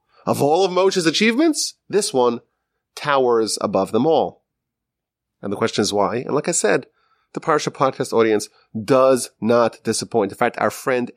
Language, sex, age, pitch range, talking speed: English, male, 30-49, 120-185 Hz, 165 wpm